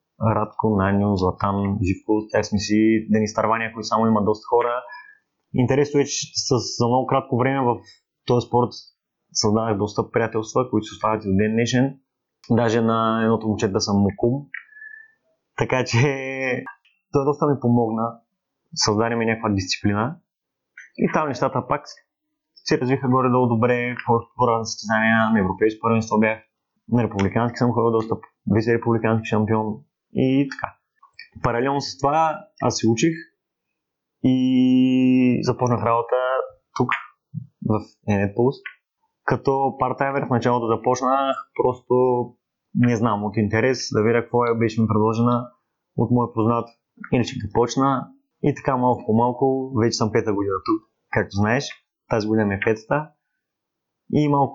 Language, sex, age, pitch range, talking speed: Bulgarian, male, 30-49, 110-130 Hz, 140 wpm